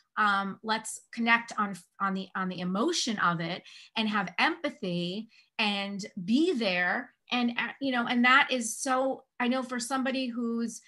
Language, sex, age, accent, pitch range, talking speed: English, female, 30-49, American, 195-255 Hz, 165 wpm